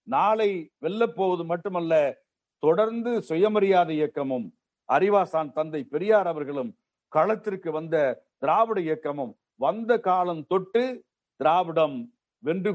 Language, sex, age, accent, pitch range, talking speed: Tamil, male, 50-69, native, 170-225 Hz, 95 wpm